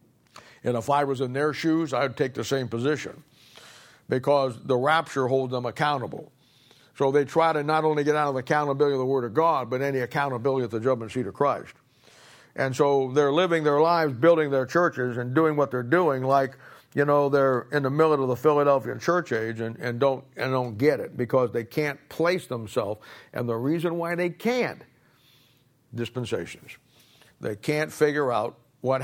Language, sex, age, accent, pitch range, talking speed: English, male, 60-79, American, 125-150 Hz, 190 wpm